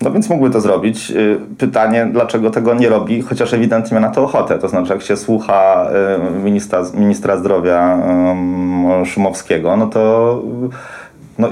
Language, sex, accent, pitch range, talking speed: Polish, male, native, 100-120 Hz, 140 wpm